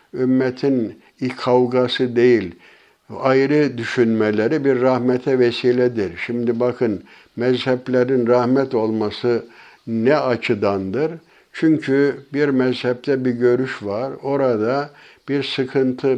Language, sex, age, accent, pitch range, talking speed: Turkish, male, 60-79, native, 115-140 Hz, 90 wpm